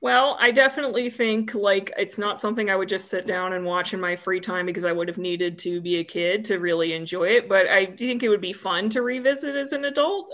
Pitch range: 170-210 Hz